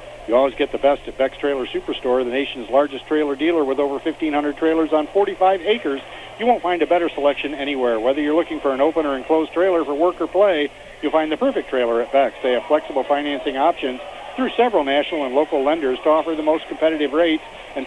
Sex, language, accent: male, English, American